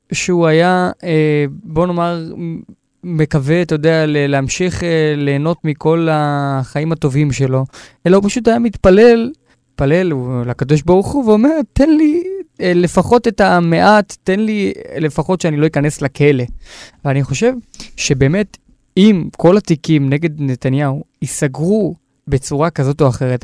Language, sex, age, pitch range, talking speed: Hebrew, male, 20-39, 140-185 Hz, 125 wpm